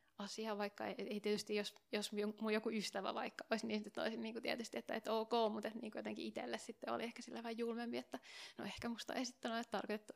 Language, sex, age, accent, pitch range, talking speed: Finnish, female, 20-39, native, 190-230 Hz, 225 wpm